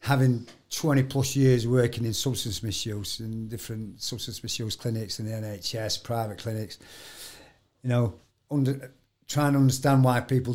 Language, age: English, 50-69